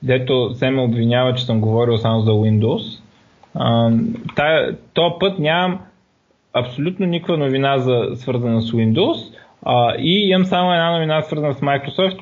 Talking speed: 135 wpm